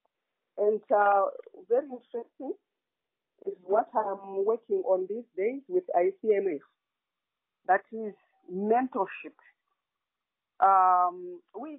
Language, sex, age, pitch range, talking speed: English, female, 50-69, 200-335 Hz, 90 wpm